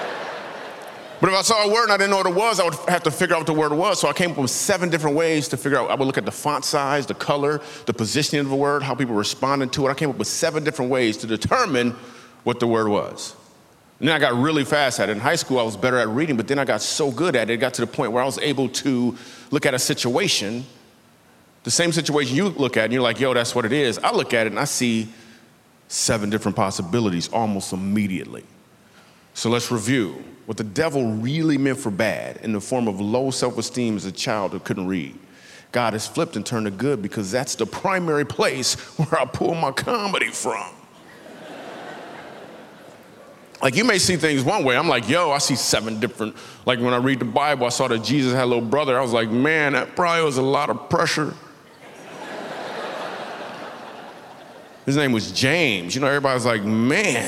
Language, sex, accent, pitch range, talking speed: English, male, American, 115-145 Hz, 230 wpm